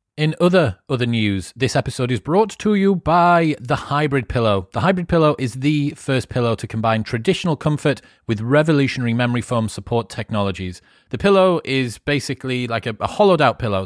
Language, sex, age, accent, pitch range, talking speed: English, male, 30-49, British, 105-135 Hz, 175 wpm